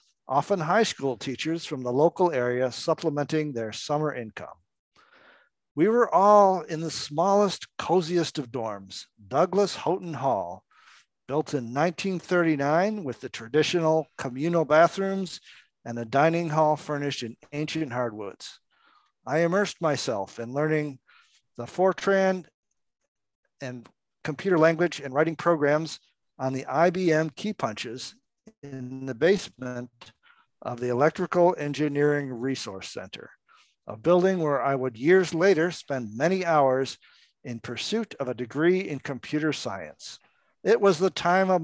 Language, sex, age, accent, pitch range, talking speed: English, male, 50-69, American, 135-175 Hz, 130 wpm